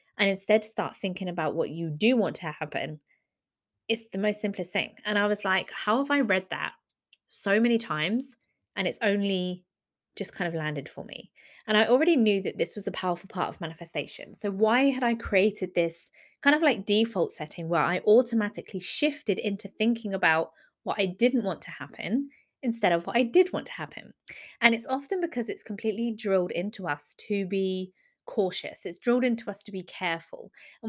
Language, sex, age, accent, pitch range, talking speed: English, female, 20-39, British, 185-235 Hz, 195 wpm